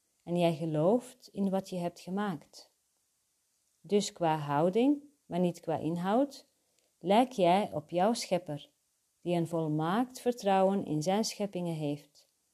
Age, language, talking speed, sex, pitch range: 40-59, Dutch, 135 wpm, female, 165-230 Hz